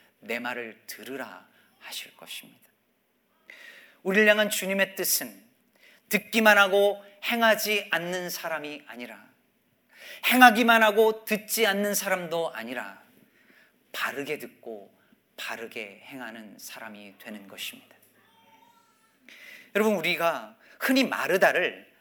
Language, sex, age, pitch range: Korean, male, 40-59, 155-225 Hz